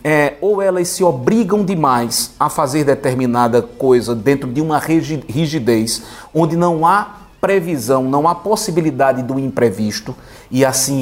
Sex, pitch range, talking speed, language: male, 125-175 Hz, 130 wpm, Portuguese